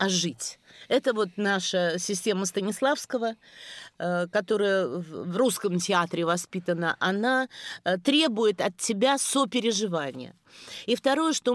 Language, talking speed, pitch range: Russian, 105 wpm, 185-245 Hz